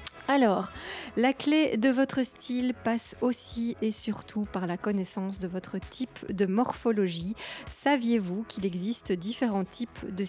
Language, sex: French, female